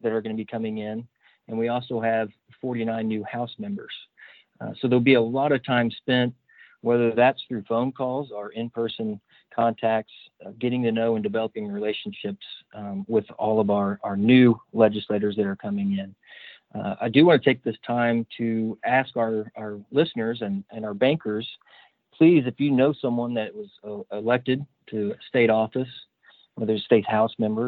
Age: 40-59